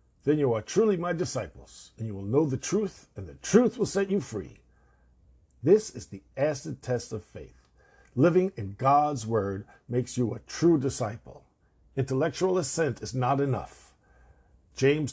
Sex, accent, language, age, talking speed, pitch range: male, American, English, 50-69, 165 wpm, 105-155 Hz